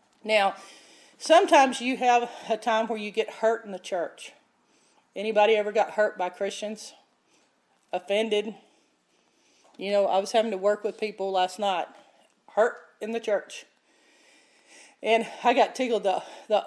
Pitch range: 200-250 Hz